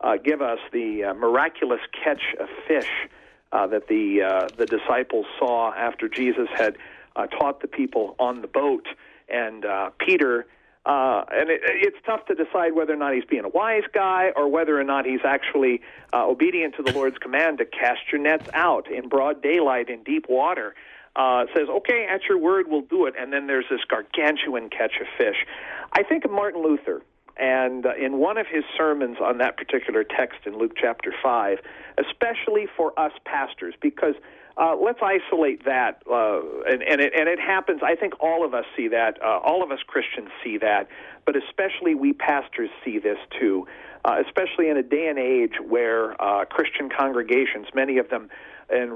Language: English